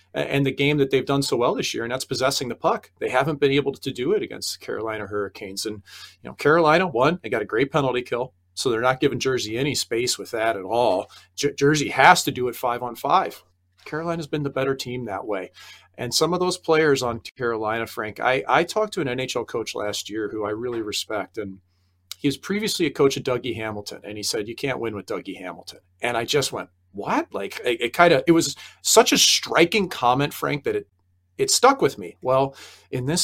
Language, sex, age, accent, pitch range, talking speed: English, male, 40-59, American, 105-140 Hz, 230 wpm